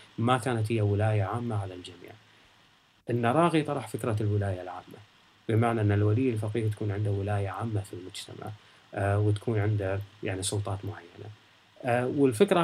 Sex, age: male, 30-49